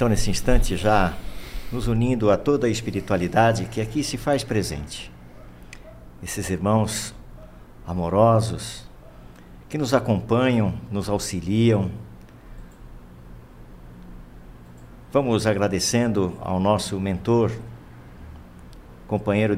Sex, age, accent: male, 50-69, Brazilian